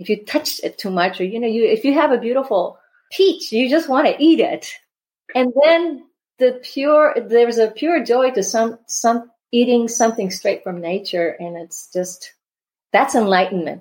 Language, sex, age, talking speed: English, female, 40-59, 185 wpm